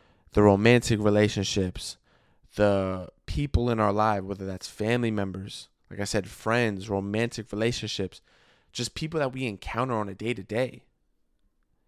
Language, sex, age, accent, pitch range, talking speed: English, male, 20-39, American, 100-125 Hz, 130 wpm